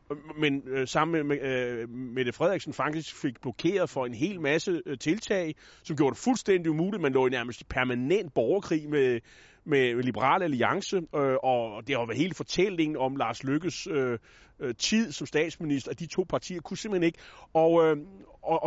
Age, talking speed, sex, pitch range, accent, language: 30-49, 185 wpm, male, 140-185 Hz, native, Danish